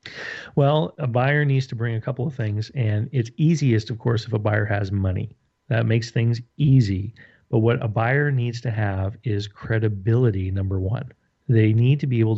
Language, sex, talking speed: English, male, 195 wpm